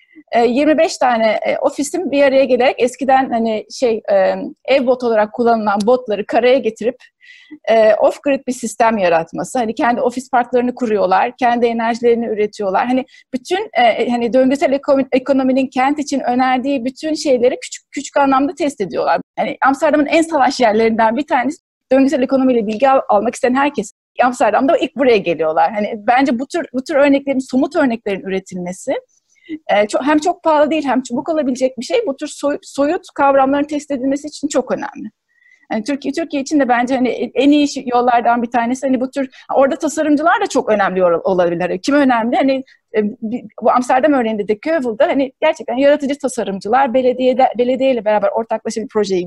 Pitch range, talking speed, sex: 235-285 Hz, 155 wpm, female